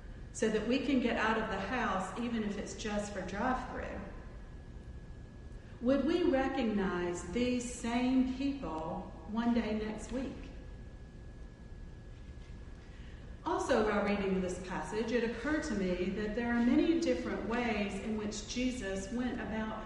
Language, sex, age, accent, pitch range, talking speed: English, female, 40-59, American, 190-255 Hz, 140 wpm